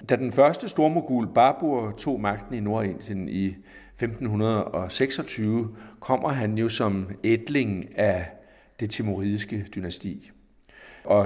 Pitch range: 95-115 Hz